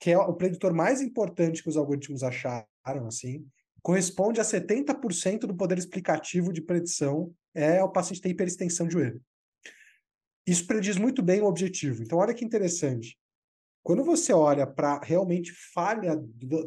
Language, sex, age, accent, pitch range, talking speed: Portuguese, male, 20-39, Brazilian, 140-190 Hz, 155 wpm